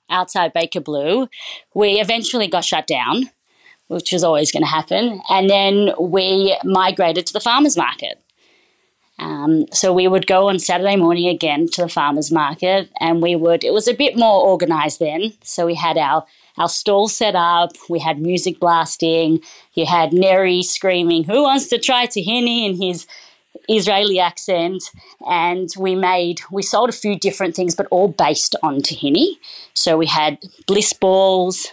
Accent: Australian